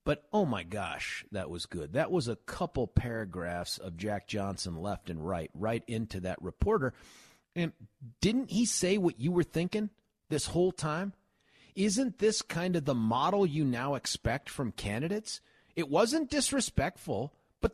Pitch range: 105-170 Hz